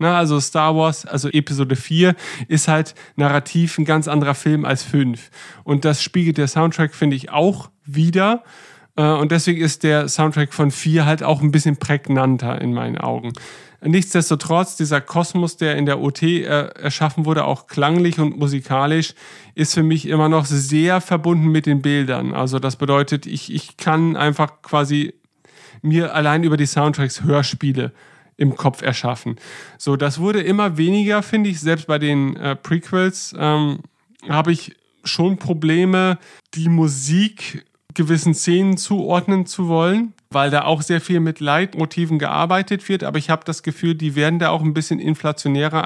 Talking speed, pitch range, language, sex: 160 wpm, 145-170 Hz, German, male